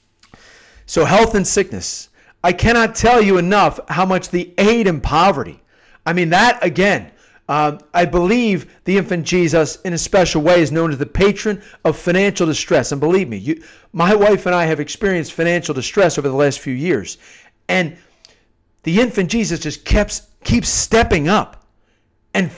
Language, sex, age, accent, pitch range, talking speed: English, male, 40-59, American, 160-205 Hz, 165 wpm